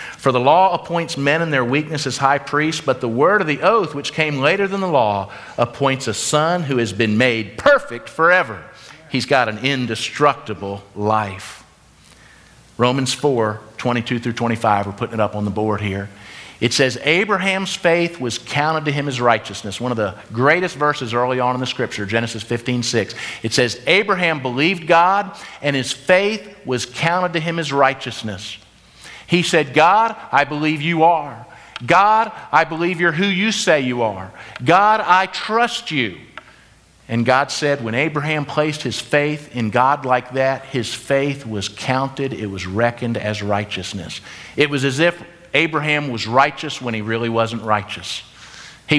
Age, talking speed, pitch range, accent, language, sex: 50-69, 175 wpm, 115-155 Hz, American, English, male